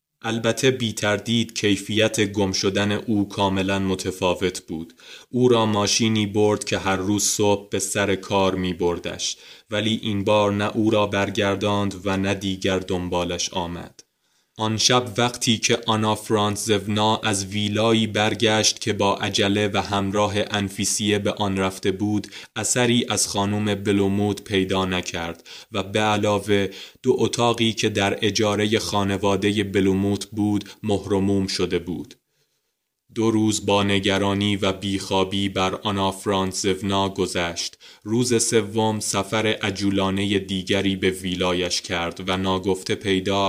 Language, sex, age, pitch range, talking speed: Persian, male, 20-39, 95-105 Hz, 130 wpm